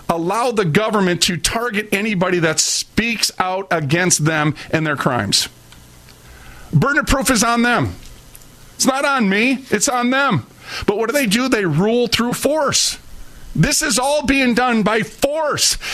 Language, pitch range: English, 190-260 Hz